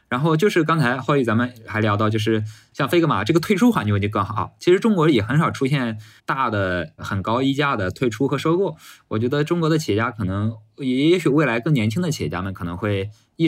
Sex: male